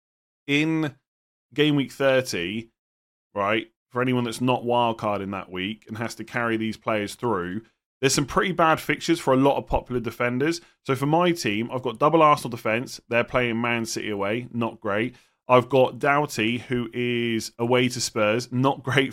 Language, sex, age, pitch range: English, male, 20-39, 110-135 Hz